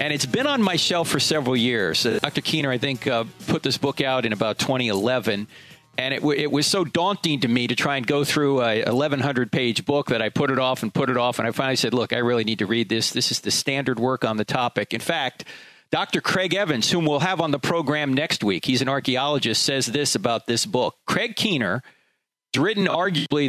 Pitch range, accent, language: 130-170 Hz, American, English